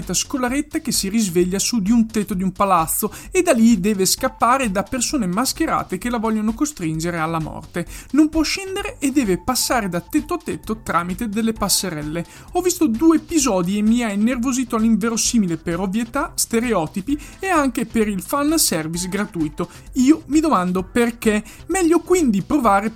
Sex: male